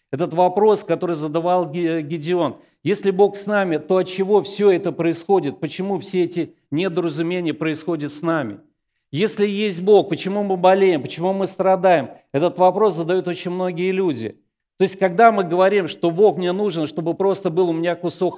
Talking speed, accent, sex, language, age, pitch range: 170 wpm, native, male, Russian, 40-59, 170-200 Hz